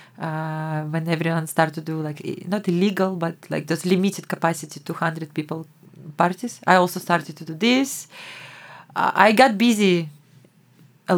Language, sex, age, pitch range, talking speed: Hebrew, female, 20-39, 165-195 Hz, 145 wpm